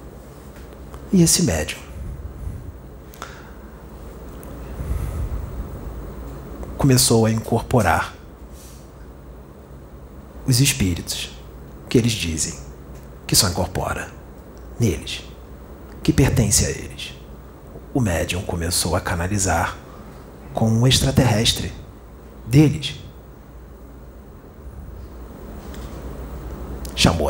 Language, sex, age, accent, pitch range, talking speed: Portuguese, male, 40-59, Brazilian, 70-105 Hz, 65 wpm